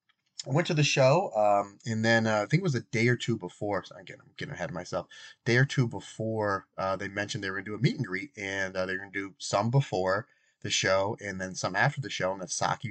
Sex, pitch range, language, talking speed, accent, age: male, 100-140 Hz, English, 280 wpm, American, 30-49